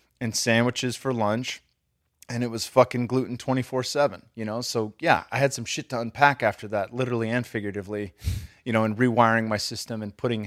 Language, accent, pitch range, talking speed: English, American, 100-115 Hz, 190 wpm